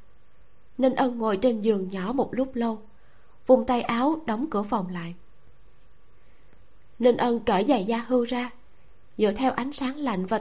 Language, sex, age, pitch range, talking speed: Vietnamese, female, 20-39, 190-255 Hz, 165 wpm